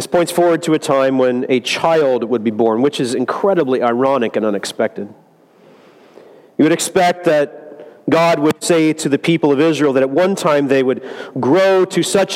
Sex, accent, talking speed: male, American, 190 wpm